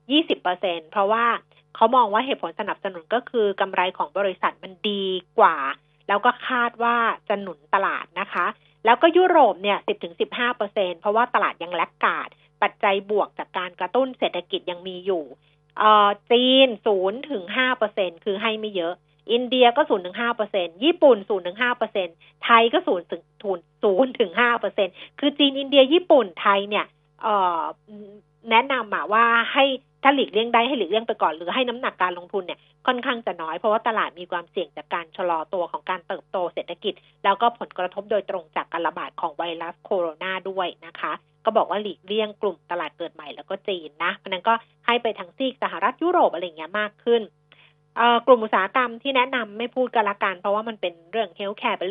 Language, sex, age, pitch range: Thai, female, 30-49, 180-235 Hz